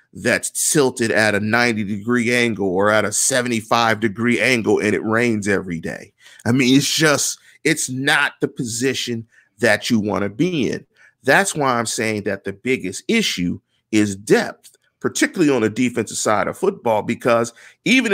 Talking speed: 160 wpm